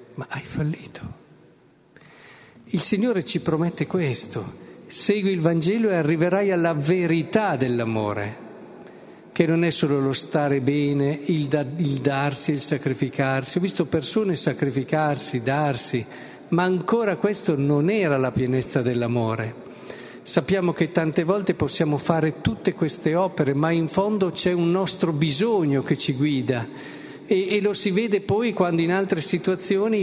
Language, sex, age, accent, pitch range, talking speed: Italian, male, 50-69, native, 145-185 Hz, 140 wpm